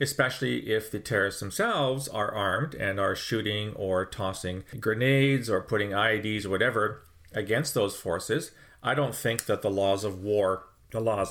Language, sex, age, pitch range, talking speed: English, male, 40-59, 100-130 Hz, 165 wpm